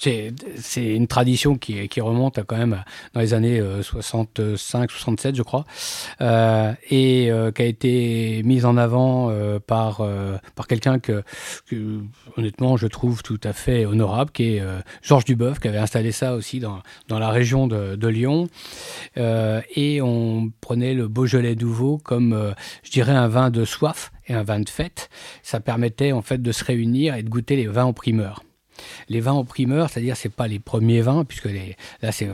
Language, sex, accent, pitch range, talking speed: French, male, French, 110-130 Hz, 195 wpm